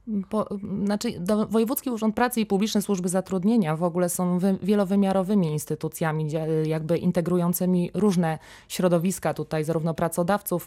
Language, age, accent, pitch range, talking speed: Polish, 20-39, native, 165-190 Hz, 130 wpm